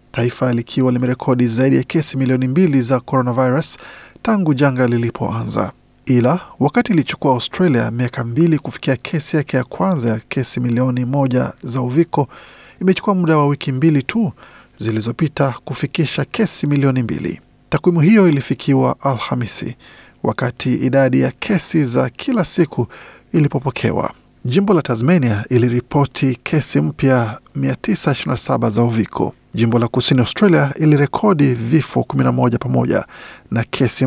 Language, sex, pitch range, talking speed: Swahili, male, 125-155 Hz, 130 wpm